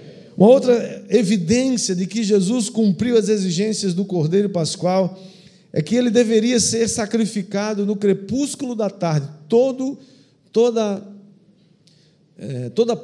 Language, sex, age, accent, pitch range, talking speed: Portuguese, male, 50-69, Brazilian, 140-205 Hz, 110 wpm